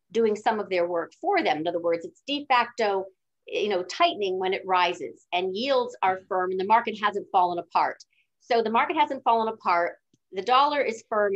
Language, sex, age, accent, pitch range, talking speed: English, female, 50-69, American, 185-255 Hz, 205 wpm